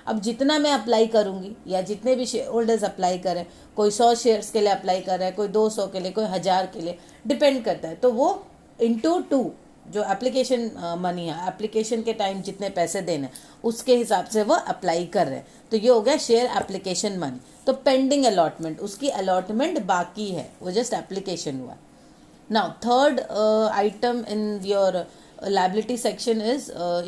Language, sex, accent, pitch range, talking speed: English, female, Indian, 190-240 Hz, 185 wpm